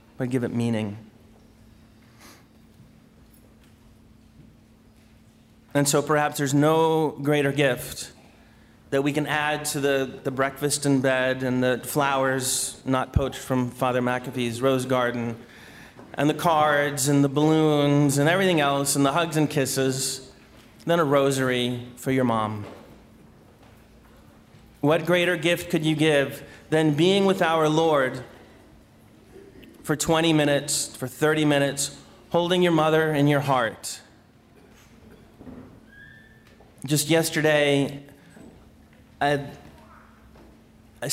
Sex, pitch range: male, 130-160 Hz